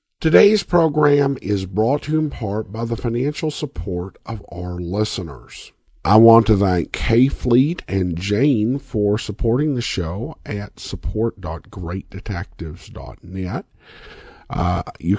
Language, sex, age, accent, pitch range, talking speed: English, male, 50-69, American, 85-120 Hz, 125 wpm